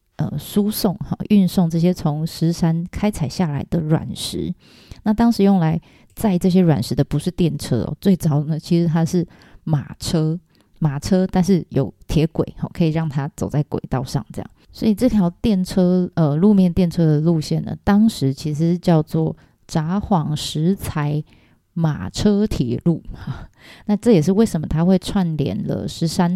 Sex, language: female, Chinese